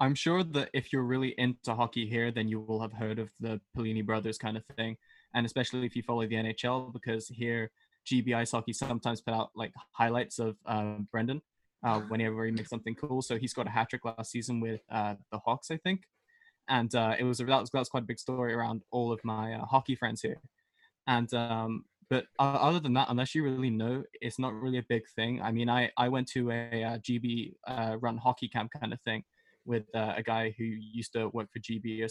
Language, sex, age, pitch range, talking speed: English, male, 10-29, 115-125 Hz, 235 wpm